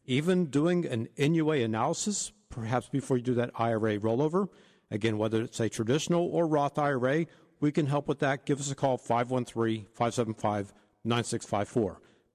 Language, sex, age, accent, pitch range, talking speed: English, male, 50-69, American, 115-170 Hz, 145 wpm